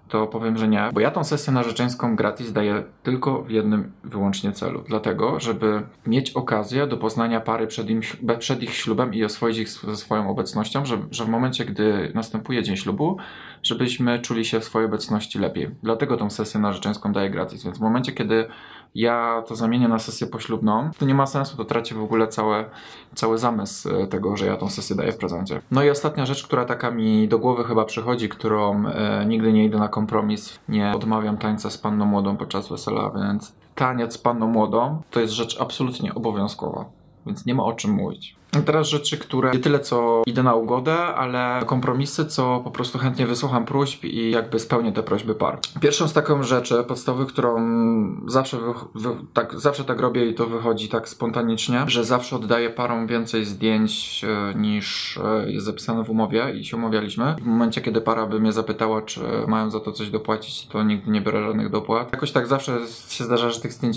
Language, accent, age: Polish, native, 20-39